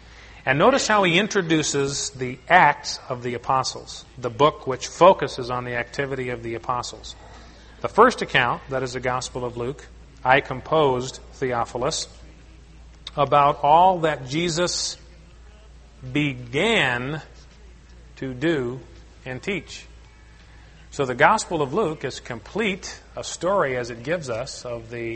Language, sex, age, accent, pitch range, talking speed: English, male, 40-59, American, 115-145 Hz, 135 wpm